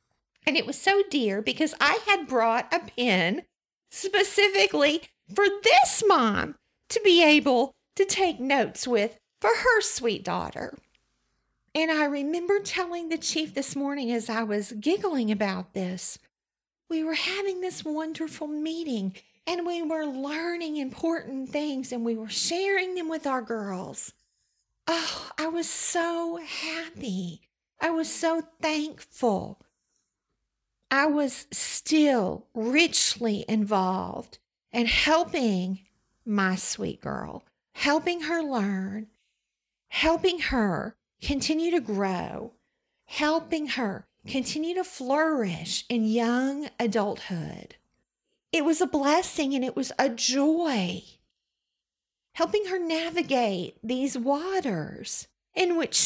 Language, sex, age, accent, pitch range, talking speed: English, female, 40-59, American, 235-335 Hz, 120 wpm